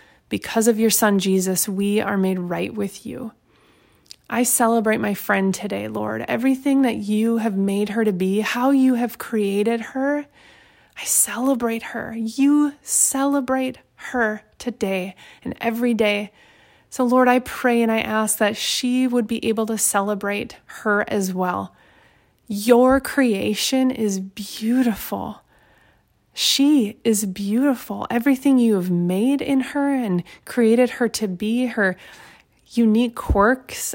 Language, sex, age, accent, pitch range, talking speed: English, female, 20-39, American, 205-250 Hz, 140 wpm